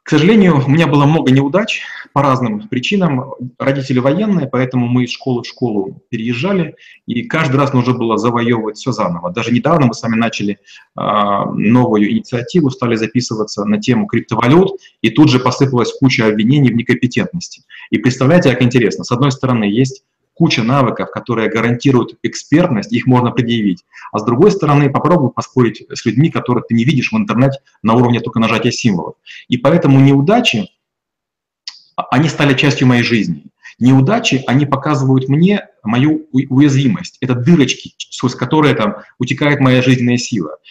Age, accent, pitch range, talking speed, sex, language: 30-49, native, 120-145 Hz, 155 wpm, male, Russian